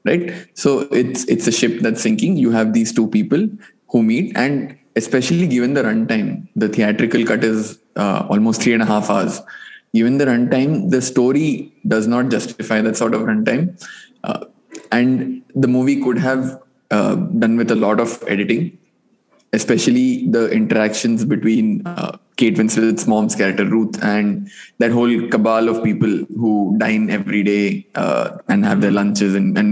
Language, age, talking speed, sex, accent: English, 20-39, 170 wpm, male, Indian